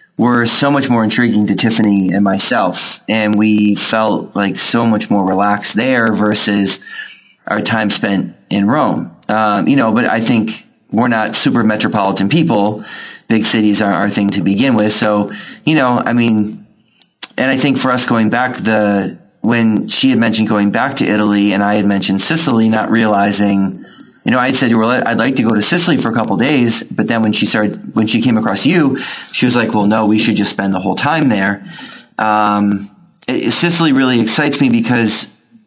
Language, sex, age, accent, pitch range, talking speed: English, male, 30-49, American, 105-125 Hz, 200 wpm